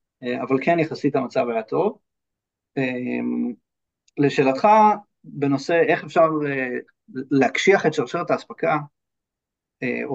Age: 30-49